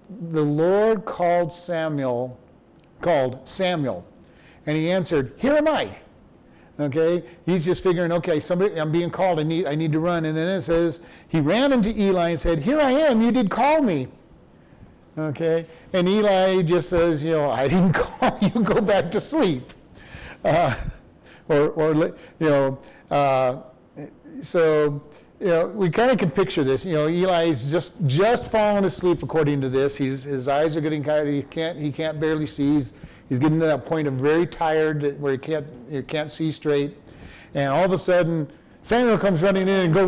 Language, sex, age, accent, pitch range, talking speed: English, male, 50-69, American, 150-200 Hz, 185 wpm